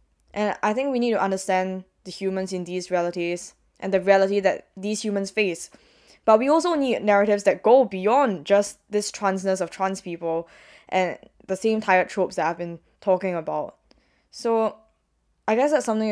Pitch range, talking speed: 175-210 Hz, 180 wpm